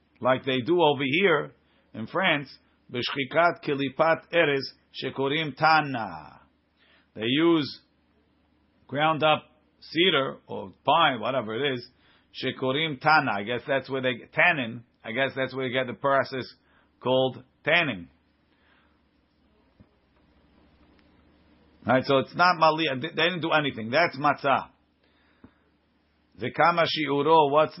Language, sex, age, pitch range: English, male, 50-69, 120-150 Hz